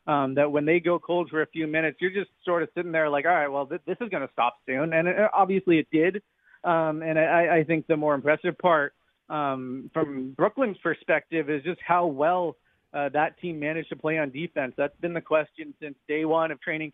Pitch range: 150-170 Hz